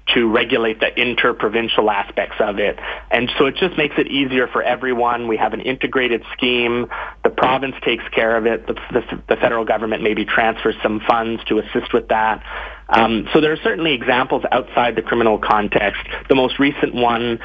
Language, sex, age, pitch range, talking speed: English, male, 30-49, 110-130 Hz, 185 wpm